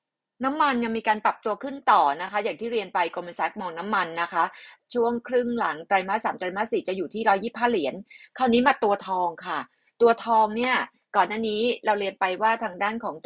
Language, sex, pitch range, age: Thai, female, 190-245 Hz, 30-49